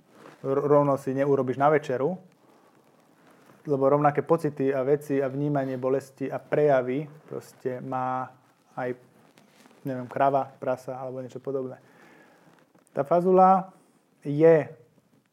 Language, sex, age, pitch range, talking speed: Slovak, male, 20-39, 130-160 Hz, 105 wpm